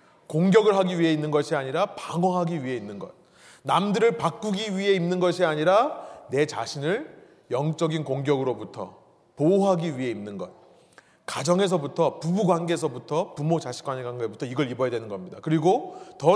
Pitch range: 140-200 Hz